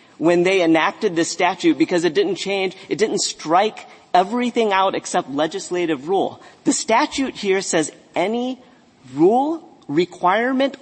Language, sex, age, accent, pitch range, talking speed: English, male, 40-59, American, 160-255 Hz, 135 wpm